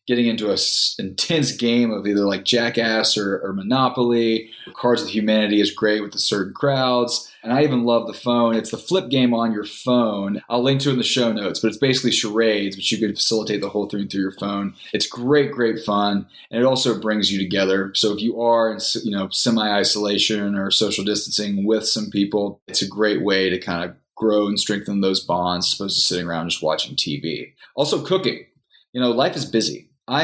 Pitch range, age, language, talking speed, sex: 100-120 Hz, 20-39, English, 215 wpm, male